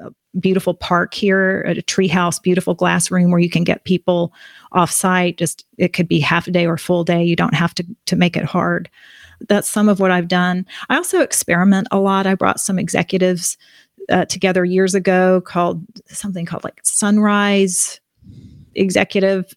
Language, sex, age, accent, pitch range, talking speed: English, female, 40-59, American, 175-200 Hz, 190 wpm